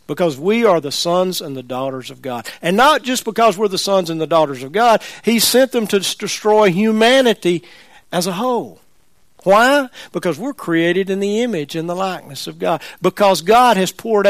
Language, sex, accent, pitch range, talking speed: English, male, American, 165-220 Hz, 195 wpm